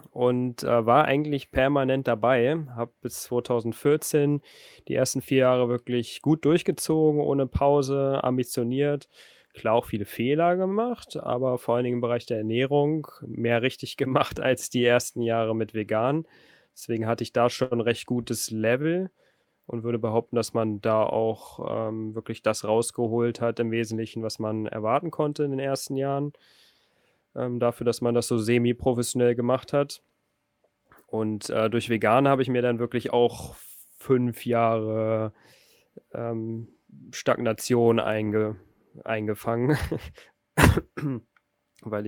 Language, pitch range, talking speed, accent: German, 110-130 Hz, 135 wpm, German